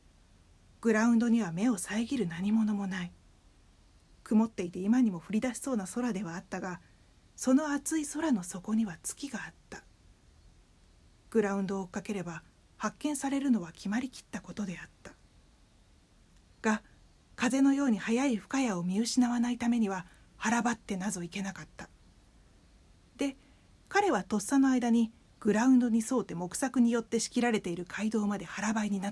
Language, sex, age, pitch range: Japanese, female, 40-59, 170-235 Hz